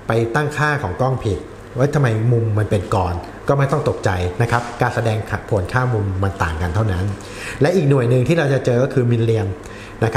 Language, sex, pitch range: Thai, male, 105-130 Hz